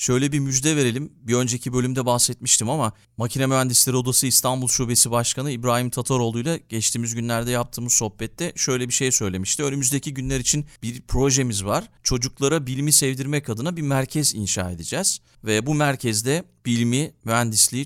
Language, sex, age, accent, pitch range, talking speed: Turkish, male, 40-59, native, 115-135 Hz, 150 wpm